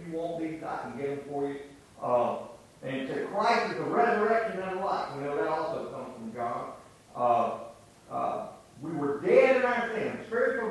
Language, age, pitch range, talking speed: English, 50-69, 140-200 Hz, 190 wpm